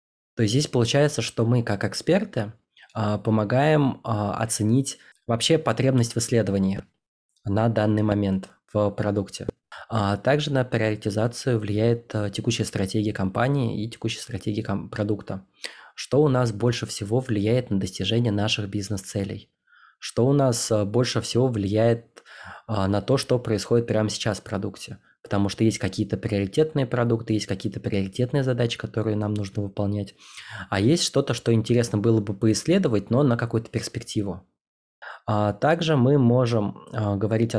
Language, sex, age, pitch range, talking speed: Russian, male, 20-39, 105-120 Hz, 135 wpm